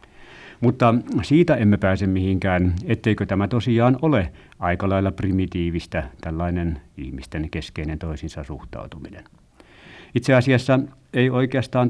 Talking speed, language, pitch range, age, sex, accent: 105 wpm, Finnish, 90-115 Hz, 60-79, male, native